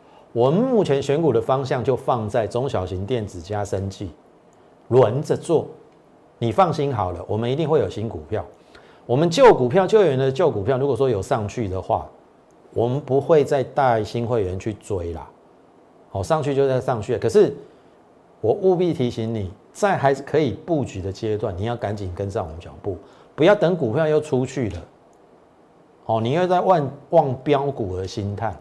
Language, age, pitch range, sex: Chinese, 50-69, 105-150 Hz, male